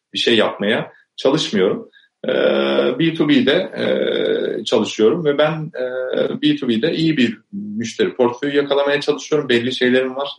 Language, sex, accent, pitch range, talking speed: Turkish, male, native, 115-150 Hz, 100 wpm